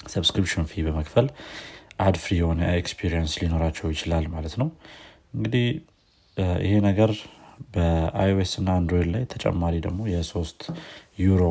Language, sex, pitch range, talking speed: Amharic, male, 85-100 Hz, 120 wpm